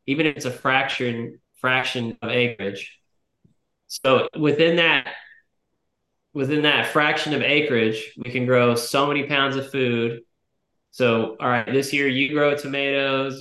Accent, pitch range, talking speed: American, 115-135 Hz, 145 wpm